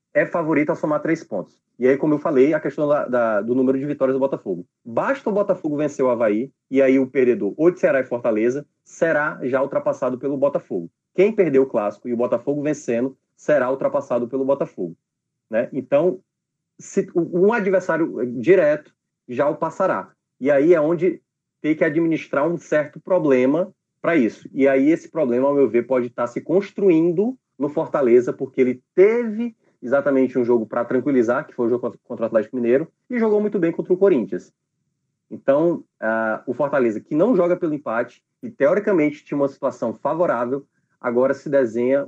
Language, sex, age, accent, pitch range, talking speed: Portuguese, male, 30-49, Brazilian, 130-185 Hz, 185 wpm